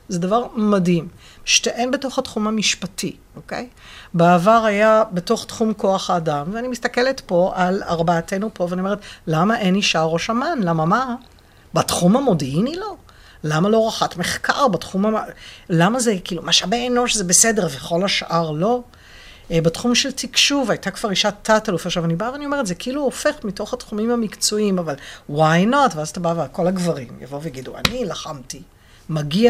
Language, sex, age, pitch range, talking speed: Hebrew, female, 50-69, 175-245 Hz, 160 wpm